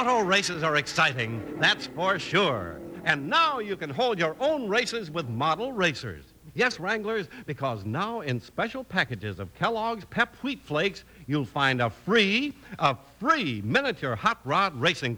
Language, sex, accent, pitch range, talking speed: English, male, American, 140-225 Hz, 160 wpm